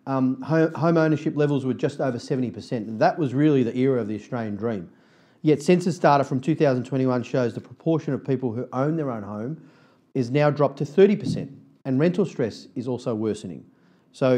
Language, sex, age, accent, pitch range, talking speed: English, male, 40-59, Australian, 125-155 Hz, 190 wpm